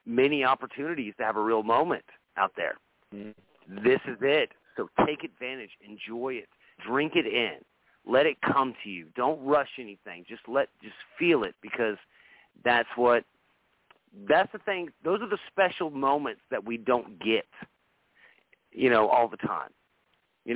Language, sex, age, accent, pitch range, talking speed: English, male, 40-59, American, 120-145 Hz, 155 wpm